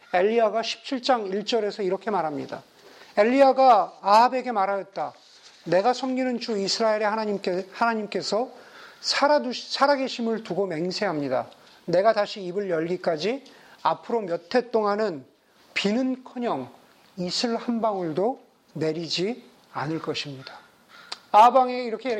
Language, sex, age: Korean, male, 40-59